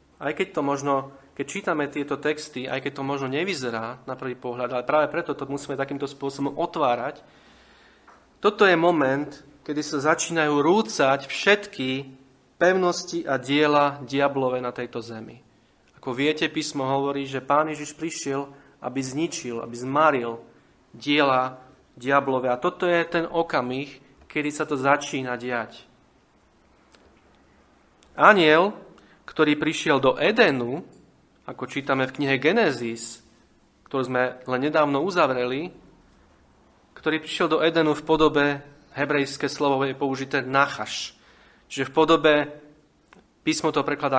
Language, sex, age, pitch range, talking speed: Slovak, male, 30-49, 135-160 Hz, 130 wpm